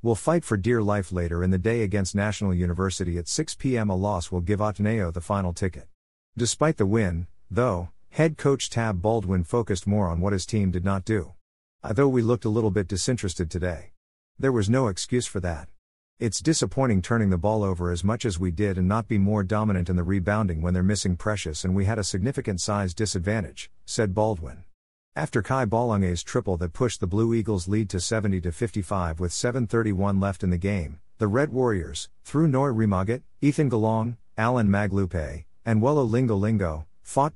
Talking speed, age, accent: 190 wpm, 50-69, American